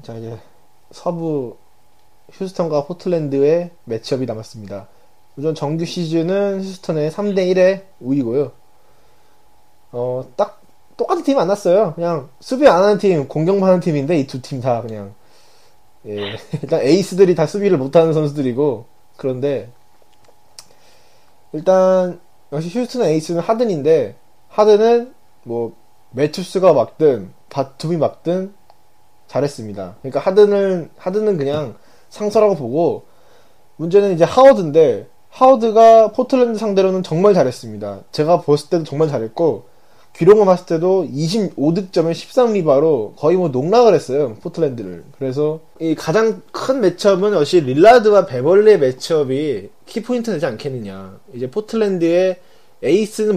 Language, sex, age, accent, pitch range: Korean, male, 20-39, native, 130-200 Hz